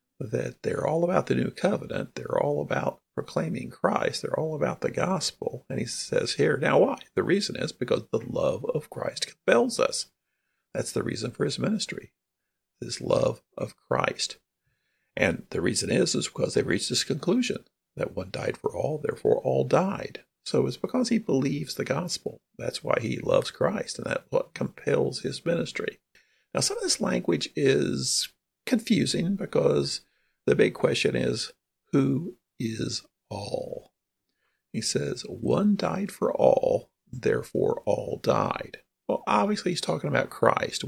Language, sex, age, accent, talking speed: English, male, 50-69, American, 160 wpm